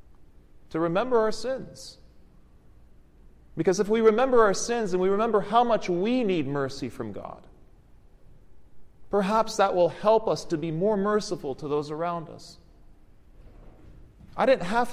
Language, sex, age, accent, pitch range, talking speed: English, male, 40-59, American, 120-185 Hz, 145 wpm